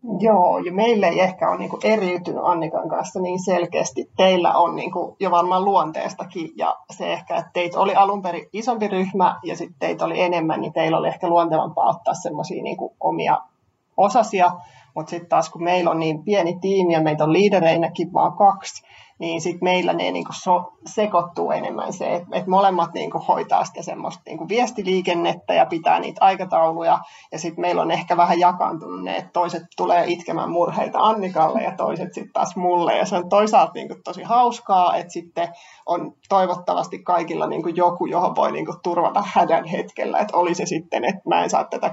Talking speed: 175 wpm